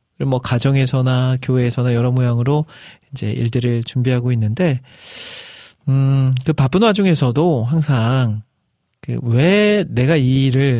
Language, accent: Korean, native